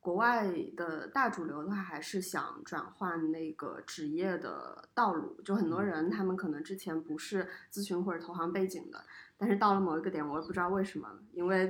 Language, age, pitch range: Chinese, 20-39, 165-195 Hz